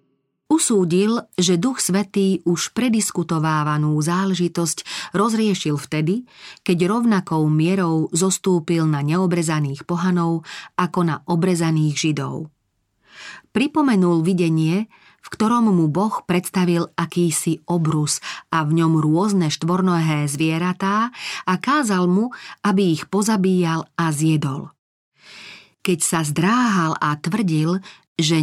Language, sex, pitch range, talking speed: Slovak, female, 155-195 Hz, 105 wpm